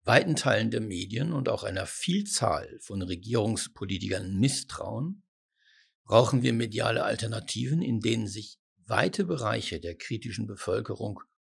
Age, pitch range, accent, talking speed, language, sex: 60-79, 100-130 Hz, German, 120 wpm, German, male